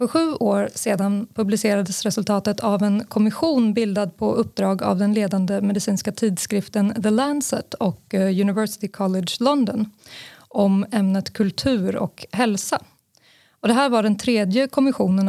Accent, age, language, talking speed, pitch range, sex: native, 20-39, Swedish, 135 wpm, 200-235 Hz, female